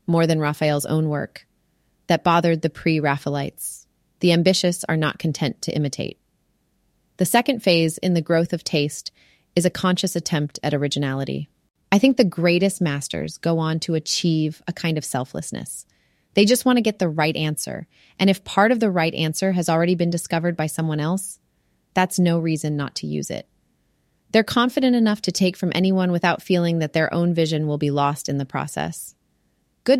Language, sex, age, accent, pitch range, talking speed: English, female, 30-49, American, 155-185 Hz, 185 wpm